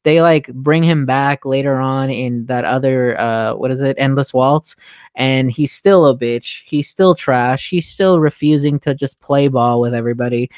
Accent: American